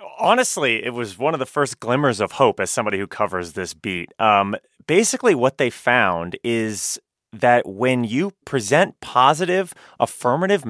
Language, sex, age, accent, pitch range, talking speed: English, male, 30-49, American, 100-140 Hz, 155 wpm